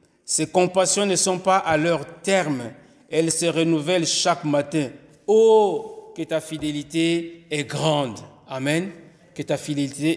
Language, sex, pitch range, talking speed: French, male, 155-190 Hz, 135 wpm